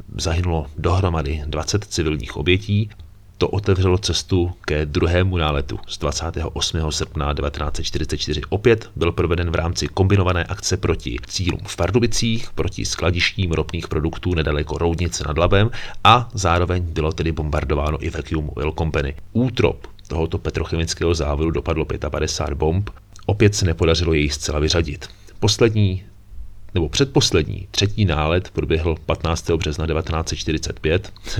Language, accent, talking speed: Czech, native, 125 wpm